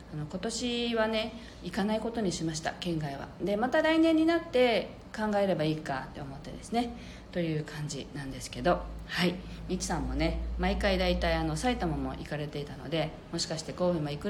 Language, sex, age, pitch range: Japanese, female, 40-59, 160-220 Hz